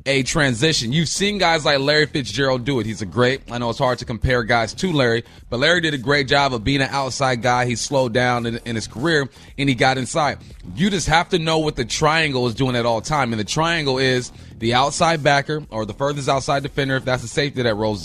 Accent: American